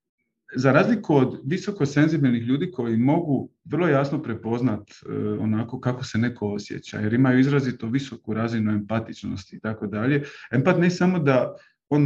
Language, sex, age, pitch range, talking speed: Croatian, male, 40-59, 120-150 Hz, 150 wpm